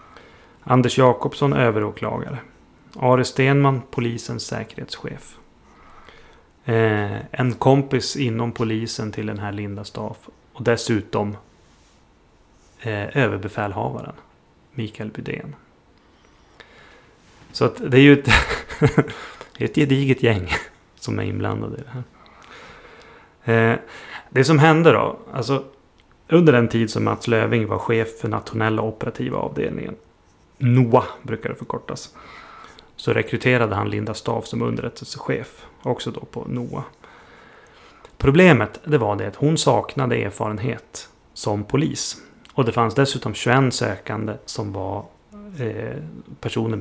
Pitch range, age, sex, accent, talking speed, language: 110-135 Hz, 30-49, male, native, 120 wpm, Swedish